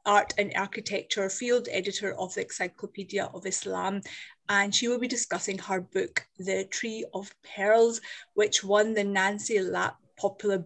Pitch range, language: 195-230 Hz, English